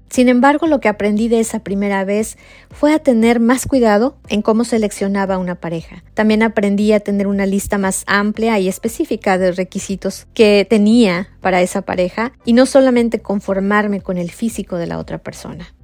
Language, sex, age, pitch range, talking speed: Spanish, female, 30-49, 190-240 Hz, 180 wpm